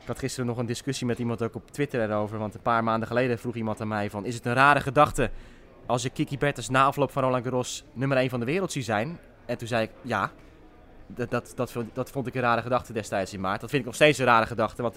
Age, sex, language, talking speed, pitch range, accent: 20-39, male, Dutch, 270 wpm, 105-145 Hz, Dutch